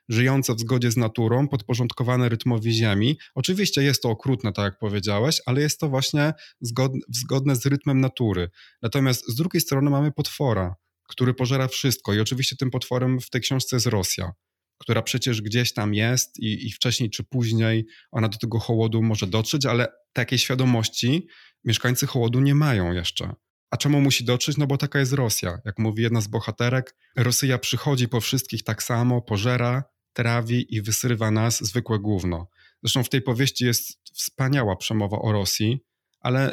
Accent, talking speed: native, 170 wpm